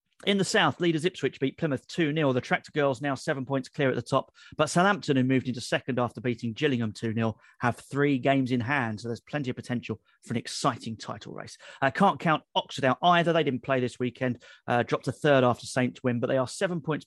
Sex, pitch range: male, 125-160 Hz